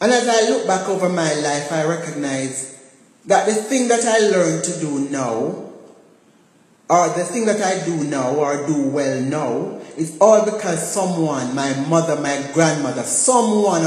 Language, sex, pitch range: English, male, 145-195 Hz